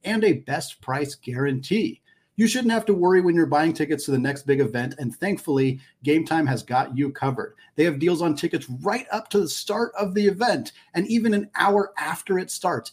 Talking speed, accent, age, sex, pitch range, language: 215 wpm, American, 40-59, male, 145-195 Hz, English